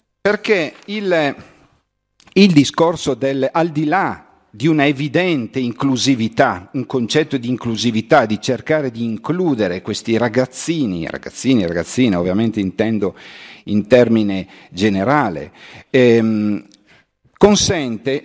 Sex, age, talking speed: male, 50-69, 105 wpm